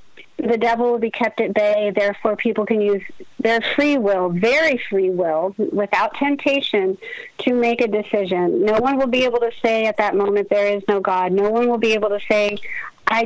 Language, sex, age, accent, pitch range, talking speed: English, female, 40-59, American, 210-245 Hz, 205 wpm